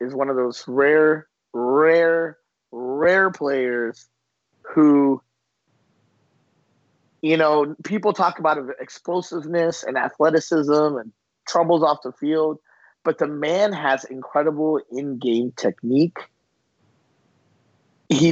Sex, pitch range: male, 125-160 Hz